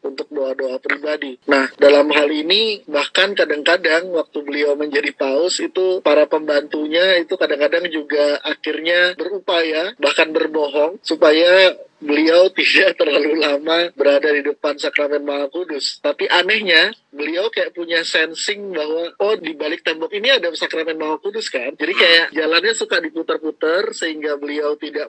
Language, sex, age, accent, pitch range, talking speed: Indonesian, male, 20-39, native, 145-195 Hz, 140 wpm